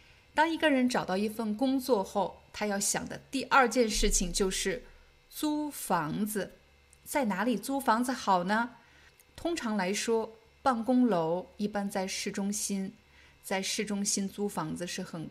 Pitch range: 195-245 Hz